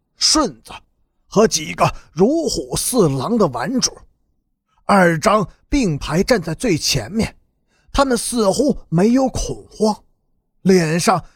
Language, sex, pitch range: Chinese, male, 170-240 Hz